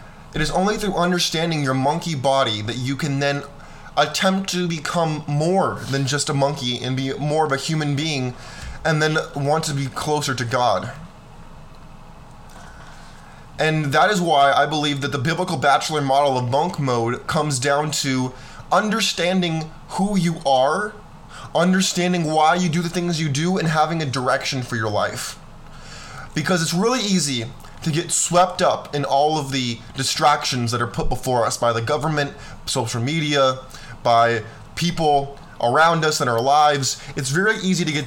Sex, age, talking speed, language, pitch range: male, 20-39, 165 wpm, English, 130-165 Hz